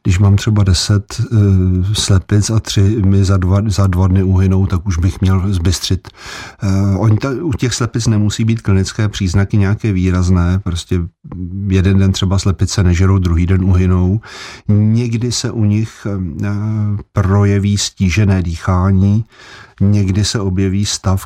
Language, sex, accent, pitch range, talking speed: Czech, male, native, 90-100 Hz, 145 wpm